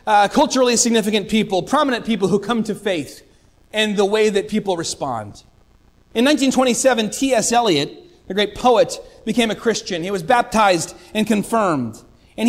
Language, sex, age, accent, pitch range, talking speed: English, male, 30-49, American, 195-255 Hz, 155 wpm